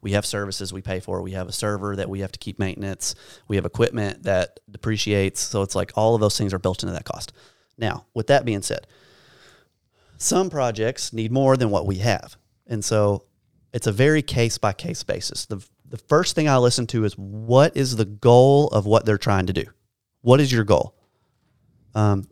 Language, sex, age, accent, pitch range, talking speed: English, male, 30-49, American, 100-130 Hz, 205 wpm